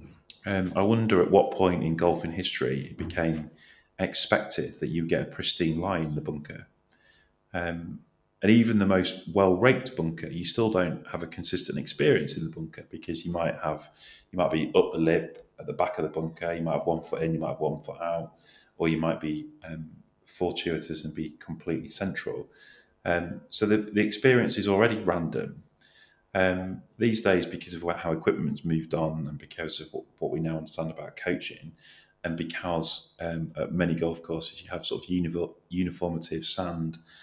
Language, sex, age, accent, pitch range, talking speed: English, male, 30-49, British, 80-90 Hz, 190 wpm